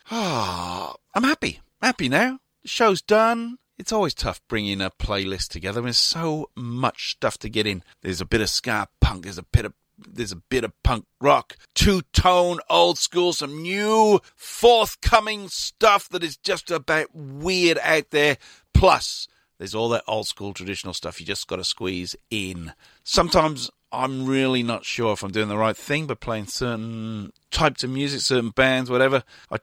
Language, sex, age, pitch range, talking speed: English, male, 40-59, 100-145 Hz, 175 wpm